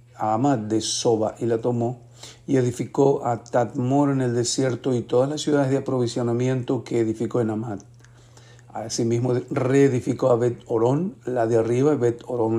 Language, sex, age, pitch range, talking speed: Spanish, male, 50-69, 115-130 Hz, 160 wpm